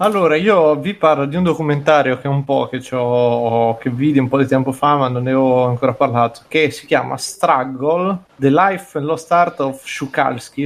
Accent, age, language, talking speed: native, 20-39, Italian, 195 wpm